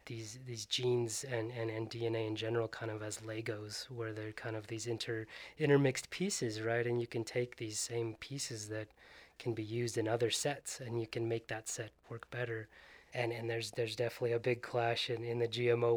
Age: 20-39